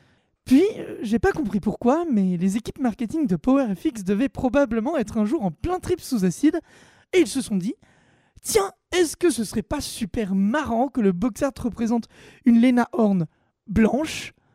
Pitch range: 210-285 Hz